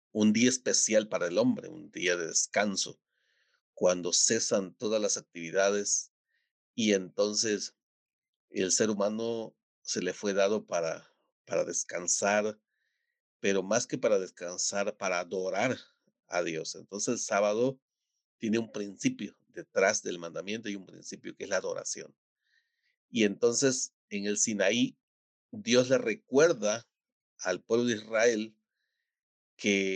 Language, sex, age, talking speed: Spanish, male, 40-59, 130 wpm